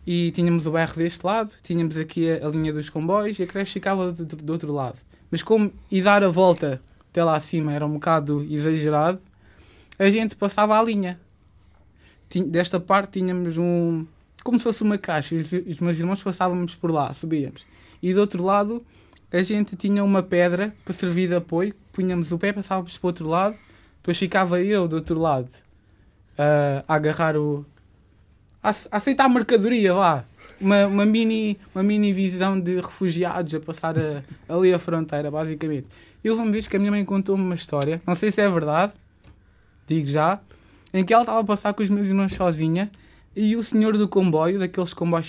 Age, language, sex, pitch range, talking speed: 20-39, Portuguese, male, 155-200 Hz, 190 wpm